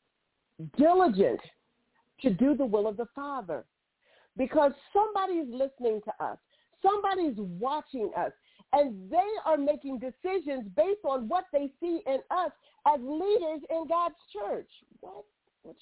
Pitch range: 260-340 Hz